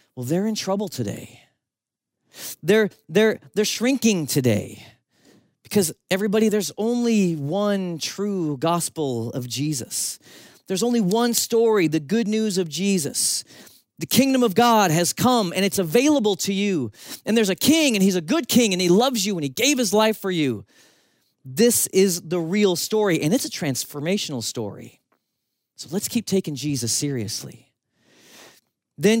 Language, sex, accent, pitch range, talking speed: English, male, American, 140-210 Hz, 155 wpm